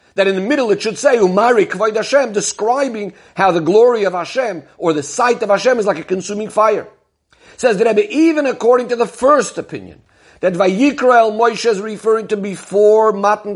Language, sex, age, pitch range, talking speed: English, male, 50-69, 180-225 Hz, 195 wpm